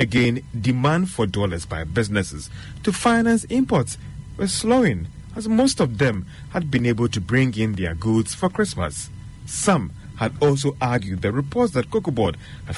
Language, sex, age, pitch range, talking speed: English, male, 30-49, 110-160 Hz, 165 wpm